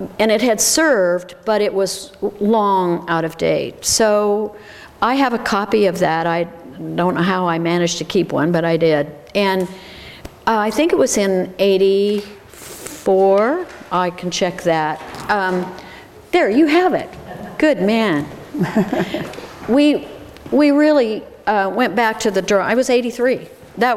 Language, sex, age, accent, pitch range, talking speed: English, female, 50-69, American, 180-225 Hz, 155 wpm